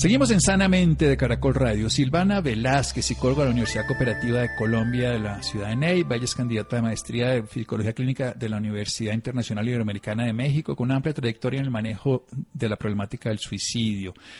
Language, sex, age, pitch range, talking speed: Spanish, male, 50-69, 115-145 Hz, 195 wpm